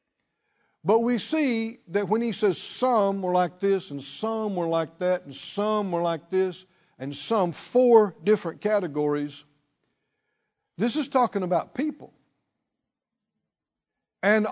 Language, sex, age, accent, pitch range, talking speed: English, male, 60-79, American, 170-225 Hz, 130 wpm